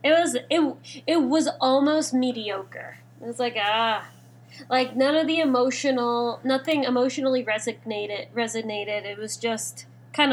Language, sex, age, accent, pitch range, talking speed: English, female, 20-39, American, 220-275 Hz, 140 wpm